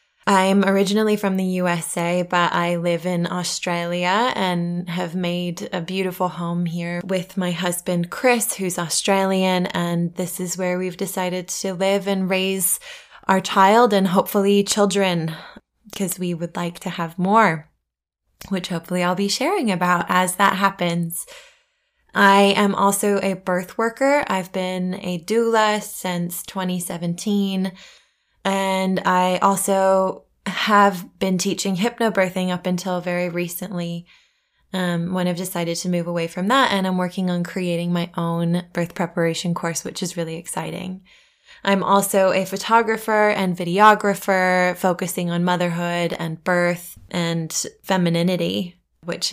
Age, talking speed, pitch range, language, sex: 20-39, 140 wpm, 175-200 Hz, English, female